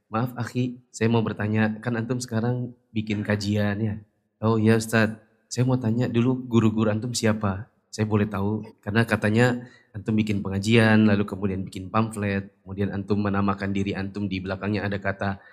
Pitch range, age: 110-130 Hz, 20-39